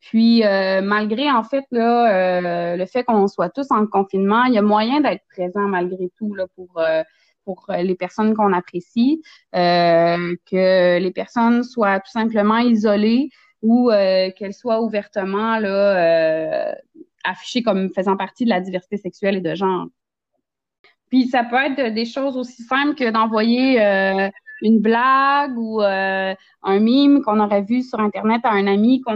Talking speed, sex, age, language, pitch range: 170 wpm, female, 20-39, French, 195-245 Hz